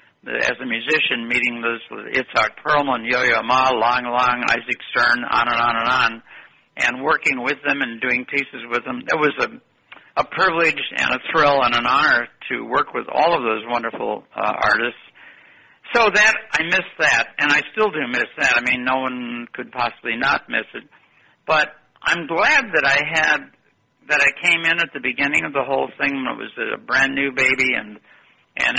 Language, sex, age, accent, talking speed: English, male, 60-79, American, 195 wpm